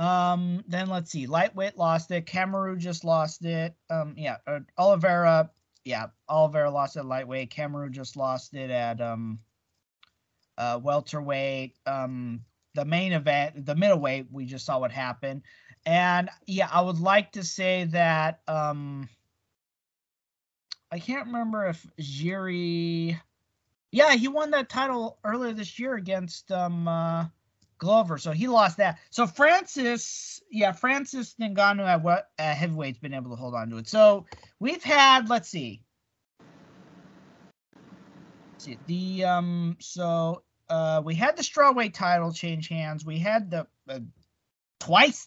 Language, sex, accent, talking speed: English, male, American, 140 wpm